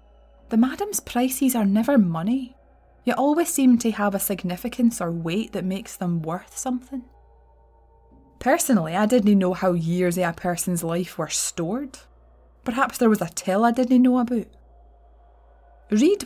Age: 20-39